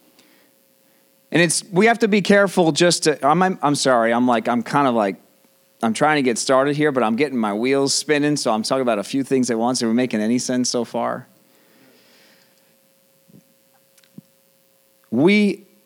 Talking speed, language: 180 wpm, English